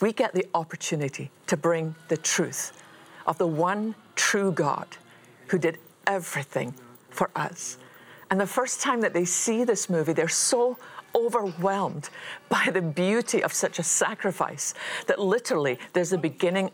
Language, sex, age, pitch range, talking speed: English, female, 50-69, 170-220 Hz, 150 wpm